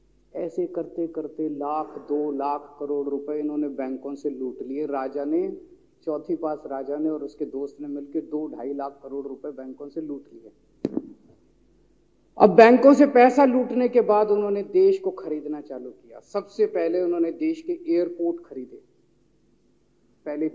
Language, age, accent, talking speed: Hindi, 40-59, native, 160 wpm